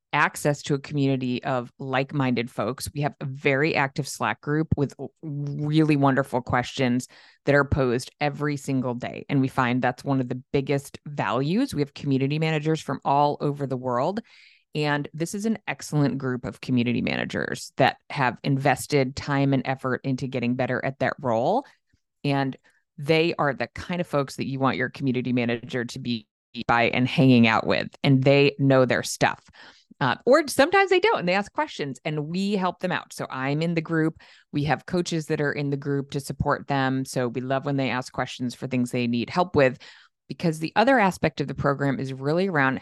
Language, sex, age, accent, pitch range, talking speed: English, female, 30-49, American, 130-155 Hz, 200 wpm